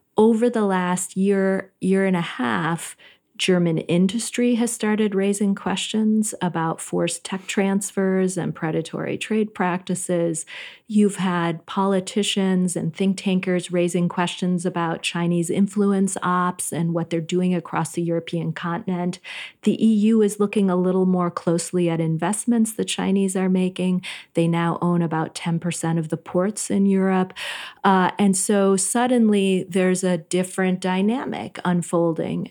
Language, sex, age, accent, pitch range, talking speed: English, female, 30-49, American, 170-200 Hz, 140 wpm